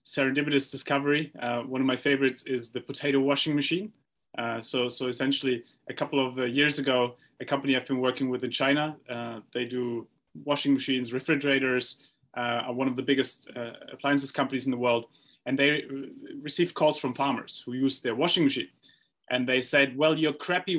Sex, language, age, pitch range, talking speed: male, English, 30-49, 130-160 Hz, 190 wpm